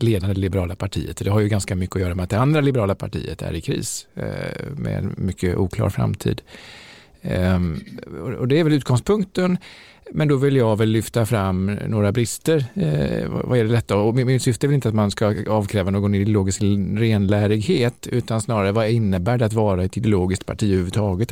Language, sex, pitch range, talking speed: Swedish, male, 95-120 Hz, 190 wpm